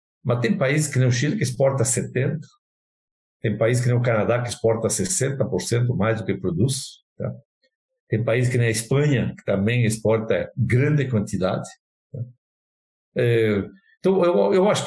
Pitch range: 110-150 Hz